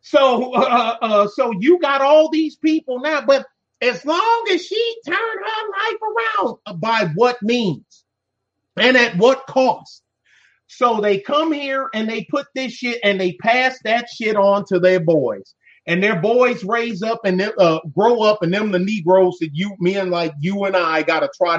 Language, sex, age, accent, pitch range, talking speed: English, male, 30-49, American, 175-250 Hz, 190 wpm